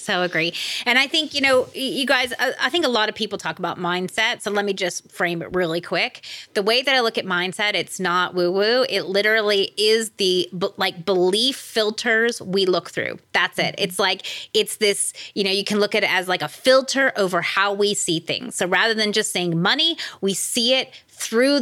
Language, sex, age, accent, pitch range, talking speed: English, female, 30-49, American, 175-230 Hz, 215 wpm